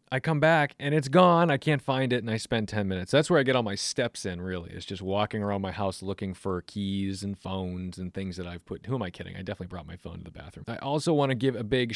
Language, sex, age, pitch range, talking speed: English, male, 30-49, 100-140 Hz, 295 wpm